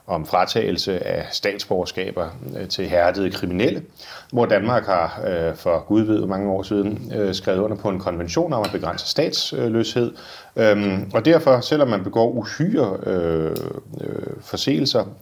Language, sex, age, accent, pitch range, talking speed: Danish, male, 30-49, native, 95-125 Hz, 120 wpm